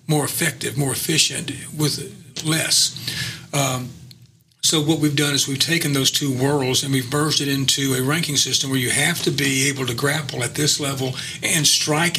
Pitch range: 135-150 Hz